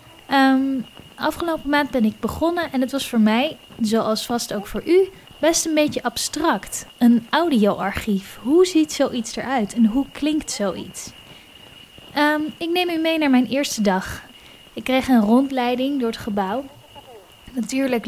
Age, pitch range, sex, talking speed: 10-29, 220-280 Hz, female, 150 wpm